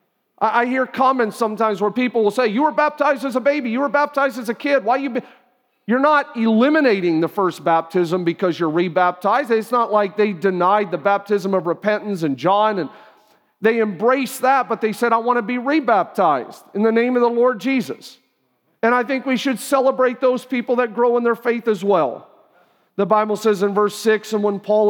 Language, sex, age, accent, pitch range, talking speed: English, male, 40-59, American, 195-240 Hz, 210 wpm